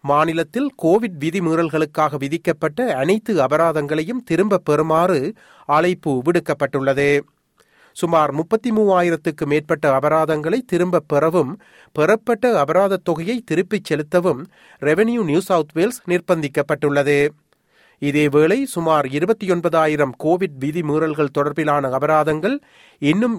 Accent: native